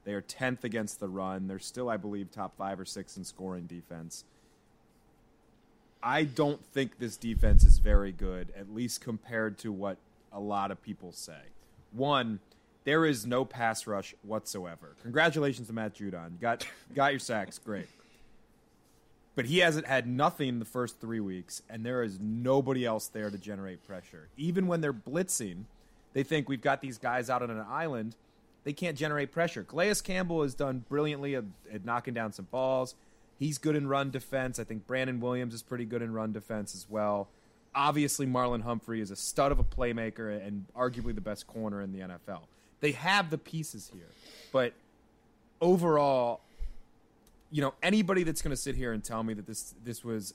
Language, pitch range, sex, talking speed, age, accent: English, 105-135 Hz, male, 180 wpm, 30-49, American